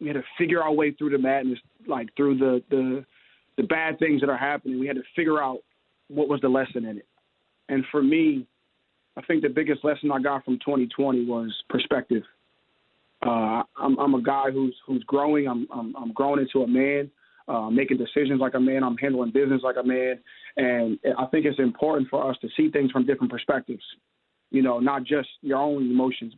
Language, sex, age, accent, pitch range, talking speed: English, male, 20-39, American, 125-145 Hz, 210 wpm